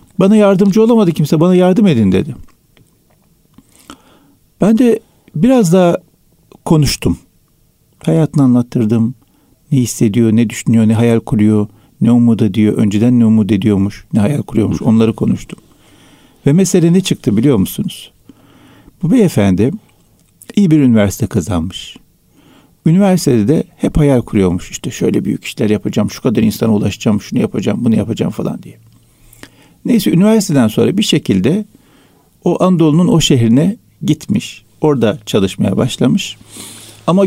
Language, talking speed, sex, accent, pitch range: Turkish, 130 wpm, male, native, 115-180 Hz